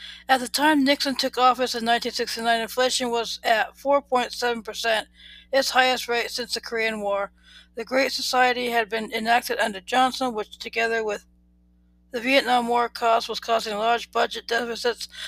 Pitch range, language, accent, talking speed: 225-255 Hz, English, American, 155 wpm